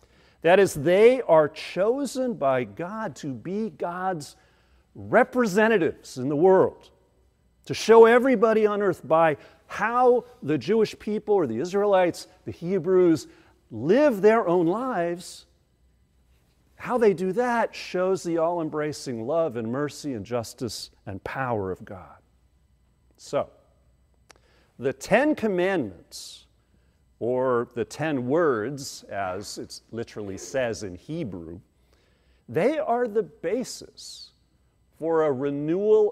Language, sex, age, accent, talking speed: English, male, 50-69, American, 115 wpm